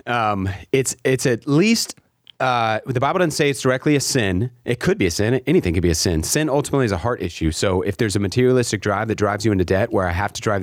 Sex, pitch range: male, 100-140 Hz